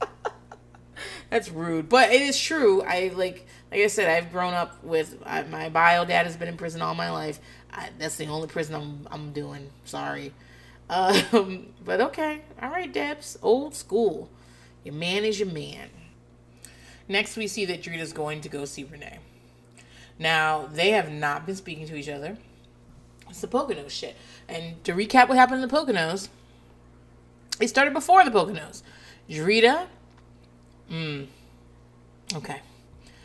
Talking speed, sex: 155 wpm, female